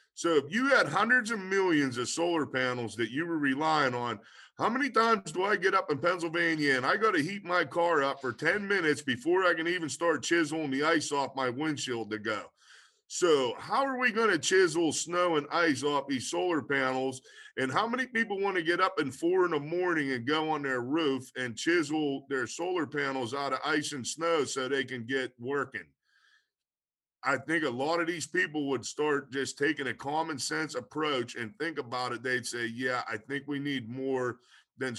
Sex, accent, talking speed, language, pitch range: male, American, 210 wpm, English, 130-175 Hz